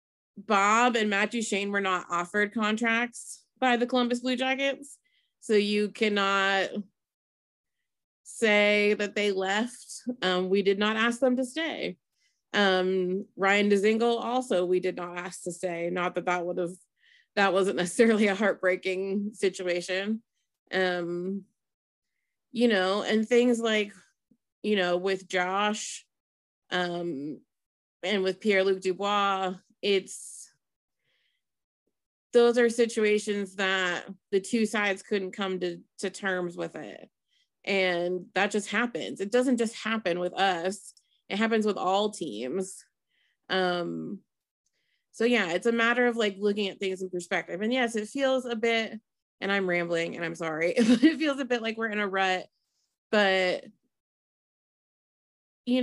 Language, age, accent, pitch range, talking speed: English, 30-49, American, 185-230 Hz, 140 wpm